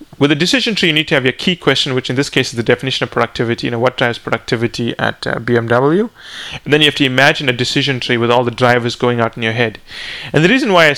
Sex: male